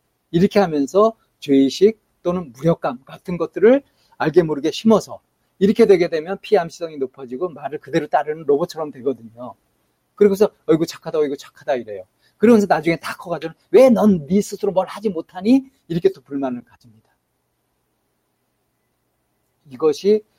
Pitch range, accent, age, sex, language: 135-205 Hz, native, 40-59, male, Korean